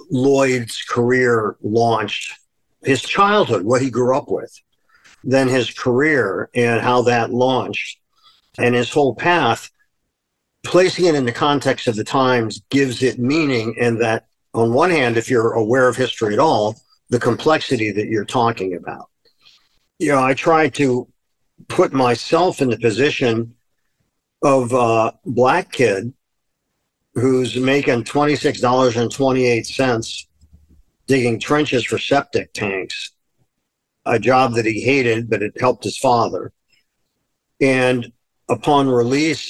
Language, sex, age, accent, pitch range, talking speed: English, male, 50-69, American, 115-135 Hz, 130 wpm